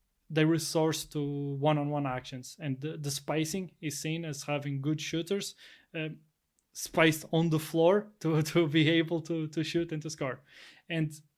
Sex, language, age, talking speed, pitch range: male, English, 20-39, 165 wpm, 145-165 Hz